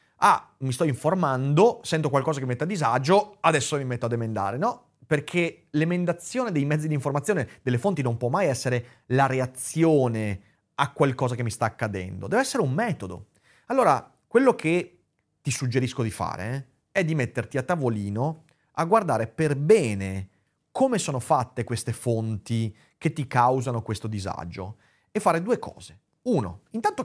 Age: 30-49